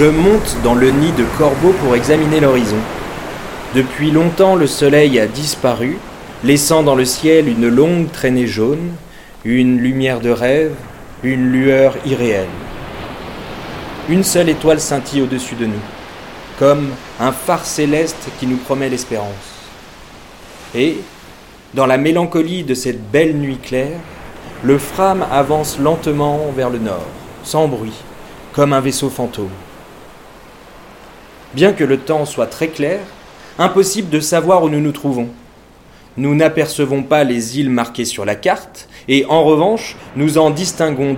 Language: French